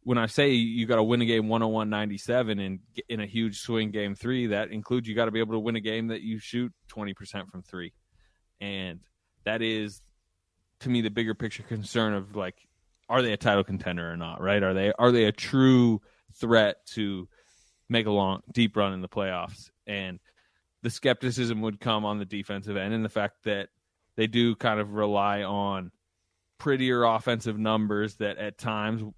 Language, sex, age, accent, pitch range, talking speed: English, male, 20-39, American, 100-115 Hz, 195 wpm